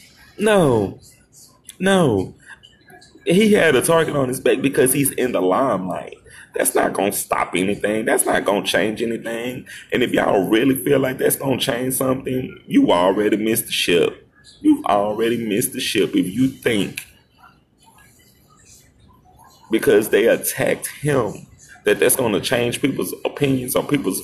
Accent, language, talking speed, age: American, English, 160 wpm, 30-49